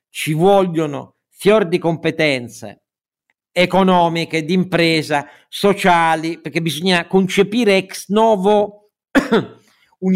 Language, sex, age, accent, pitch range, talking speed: Italian, male, 50-69, native, 155-205 Hz, 90 wpm